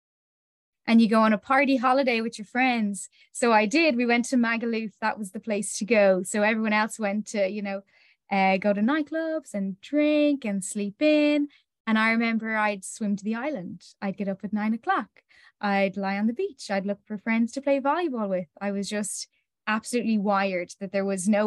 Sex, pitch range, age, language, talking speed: female, 195-245 Hz, 10-29, English, 210 wpm